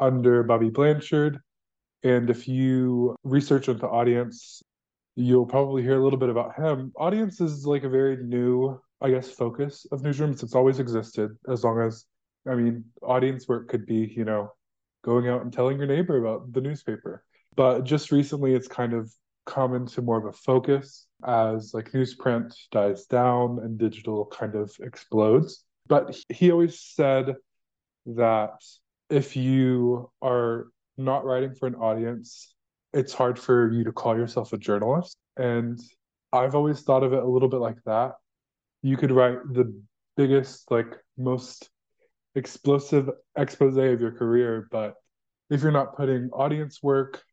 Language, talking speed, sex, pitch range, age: English, 160 wpm, male, 115-135 Hz, 20-39